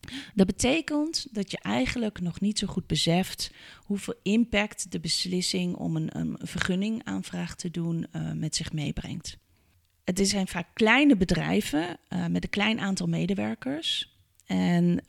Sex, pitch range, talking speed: female, 165-205 Hz, 145 wpm